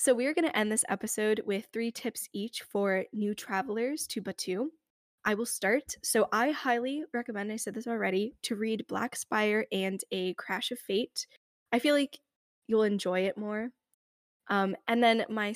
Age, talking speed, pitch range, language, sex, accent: 10-29, 185 wpm, 190-235 Hz, English, female, American